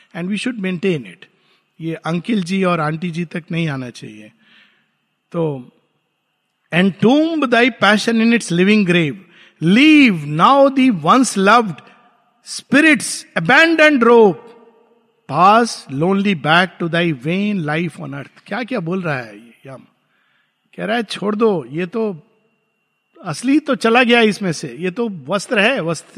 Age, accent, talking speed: 50-69, native, 125 wpm